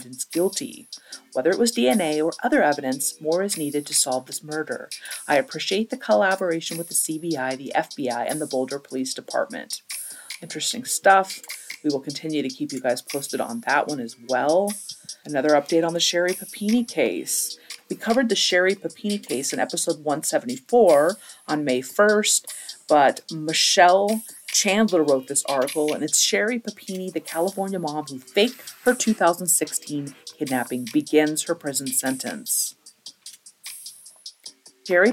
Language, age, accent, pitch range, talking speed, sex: English, 40-59, American, 145-195 Hz, 145 wpm, female